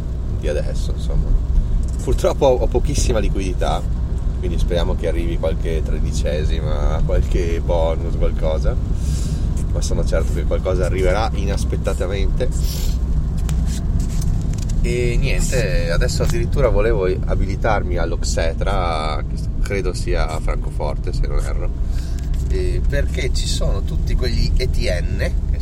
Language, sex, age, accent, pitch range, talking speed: Italian, male, 30-49, native, 75-85 Hz, 105 wpm